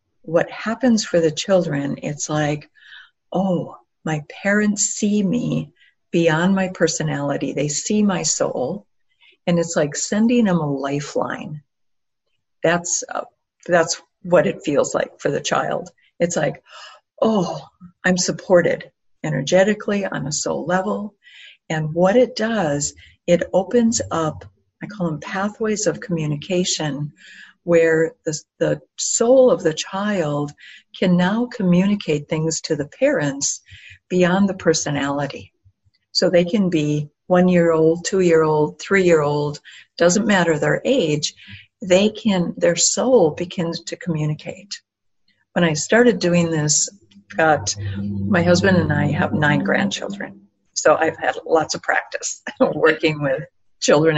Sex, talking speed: female, 130 wpm